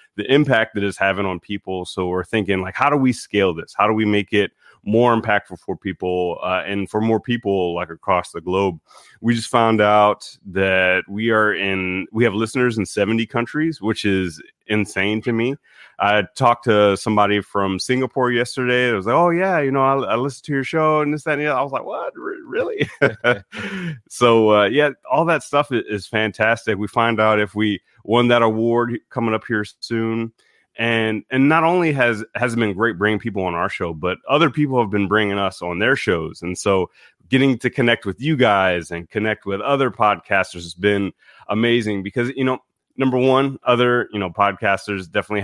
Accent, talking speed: American, 205 wpm